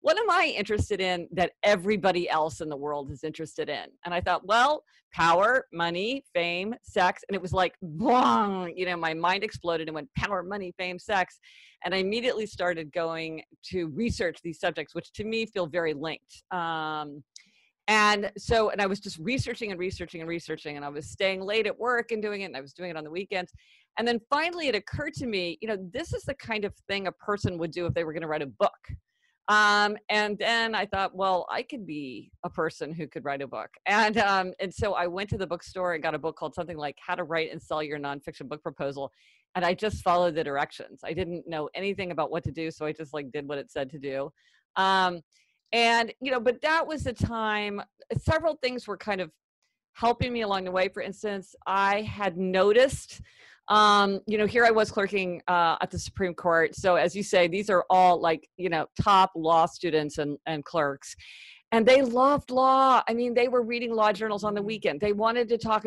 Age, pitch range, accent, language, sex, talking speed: 50-69, 165-215 Hz, American, English, female, 220 wpm